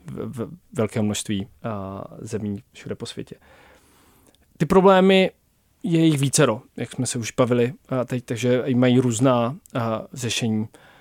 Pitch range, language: 115-135 Hz, Czech